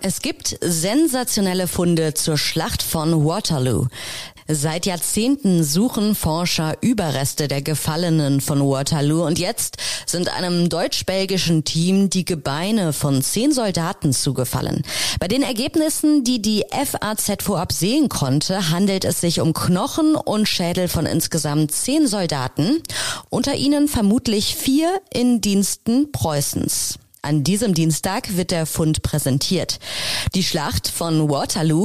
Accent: German